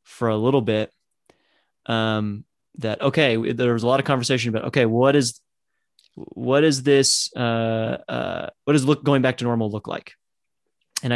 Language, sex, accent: English, male, American